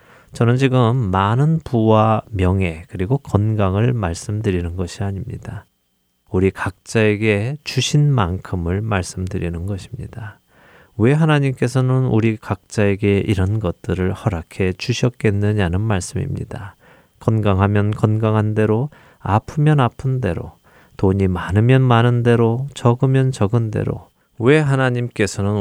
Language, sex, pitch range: Korean, male, 95-125 Hz